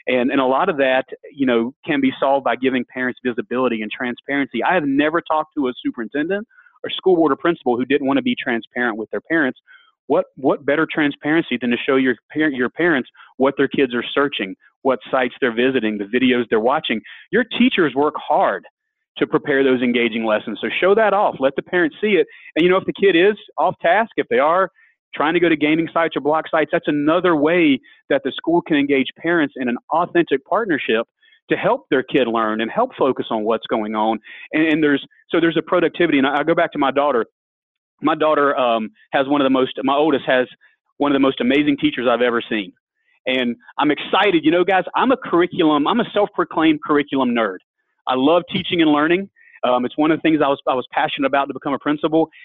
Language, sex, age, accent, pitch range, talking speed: English, male, 30-49, American, 130-200 Hz, 225 wpm